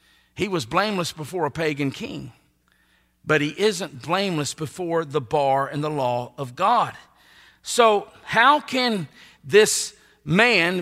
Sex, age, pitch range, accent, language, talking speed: male, 50-69, 150-210 Hz, American, English, 135 wpm